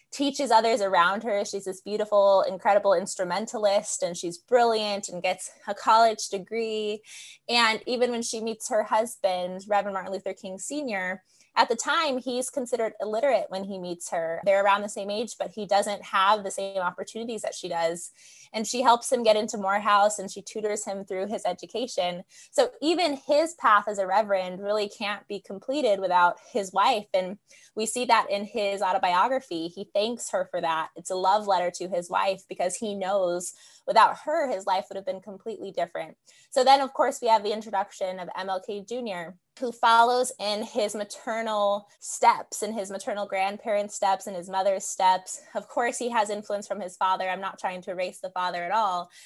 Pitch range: 185-225 Hz